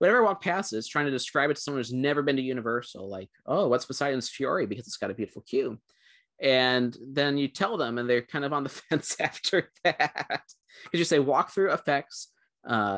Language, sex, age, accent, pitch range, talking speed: English, male, 30-49, American, 120-150 Hz, 215 wpm